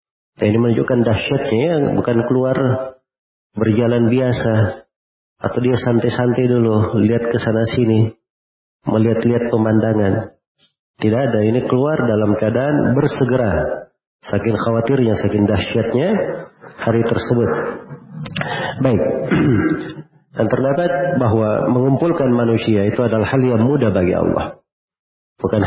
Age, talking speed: 40-59, 105 wpm